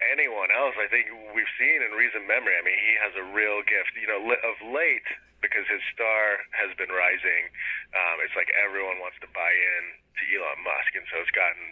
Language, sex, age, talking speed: English, male, 30-49, 210 wpm